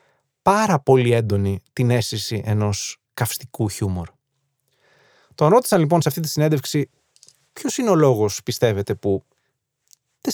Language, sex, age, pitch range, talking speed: Greek, male, 30-49, 115-145 Hz, 130 wpm